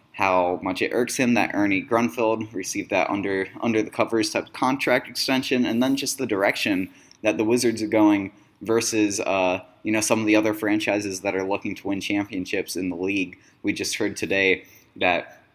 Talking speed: 195 wpm